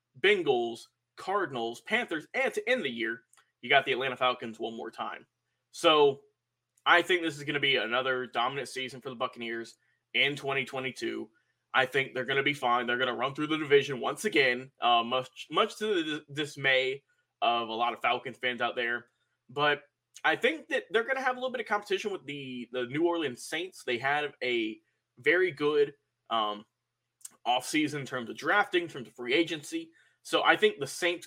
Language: English